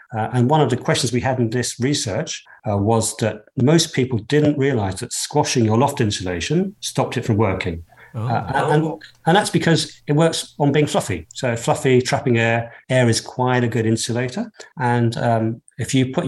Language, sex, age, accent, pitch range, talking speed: English, male, 50-69, British, 110-150 Hz, 190 wpm